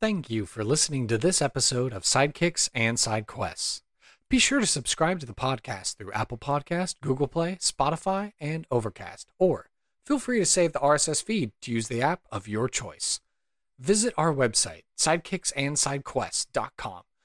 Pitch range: 120-190 Hz